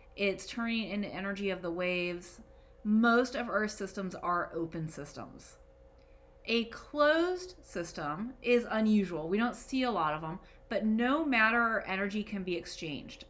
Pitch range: 175-230 Hz